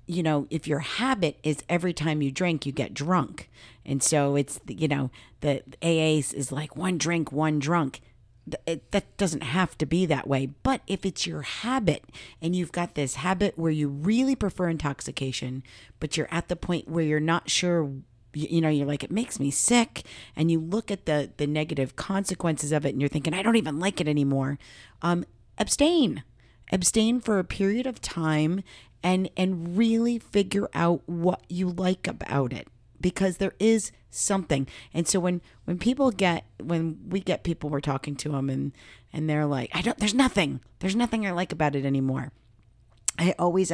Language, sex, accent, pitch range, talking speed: English, female, American, 140-190 Hz, 195 wpm